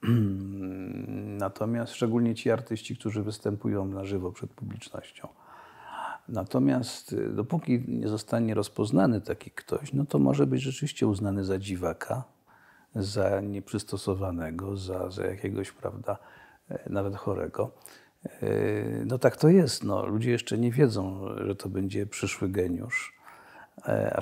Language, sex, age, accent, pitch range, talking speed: Polish, male, 50-69, native, 100-125 Hz, 115 wpm